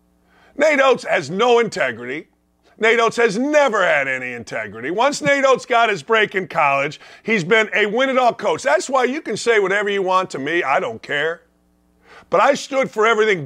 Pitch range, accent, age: 175-230 Hz, American, 40-59